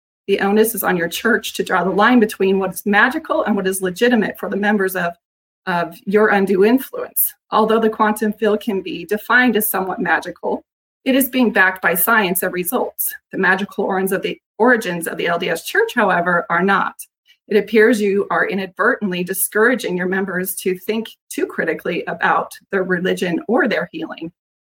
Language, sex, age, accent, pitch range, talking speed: English, female, 30-49, American, 185-225 Hz, 180 wpm